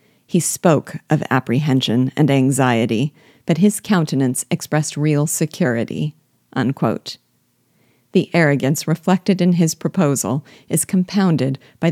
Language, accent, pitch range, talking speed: English, American, 140-180 Hz, 105 wpm